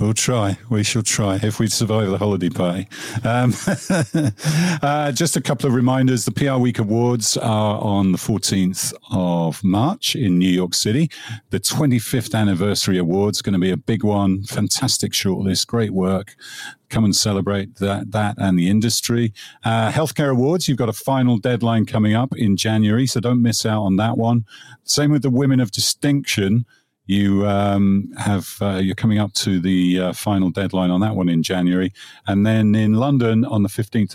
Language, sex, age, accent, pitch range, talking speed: English, male, 40-59, British, 95-125 Hz, 185 wpm